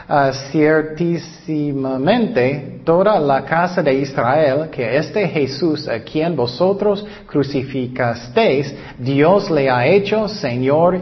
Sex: male